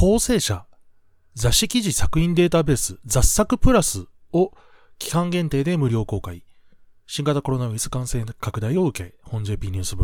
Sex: male